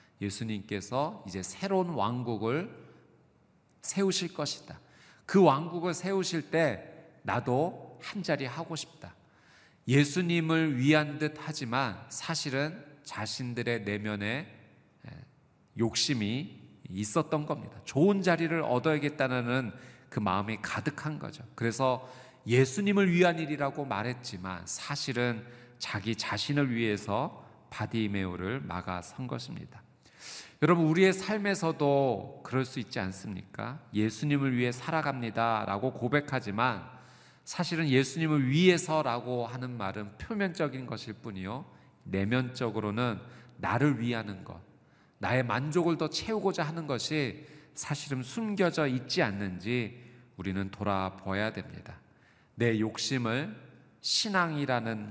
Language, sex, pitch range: Korean, male, 110-155 Hz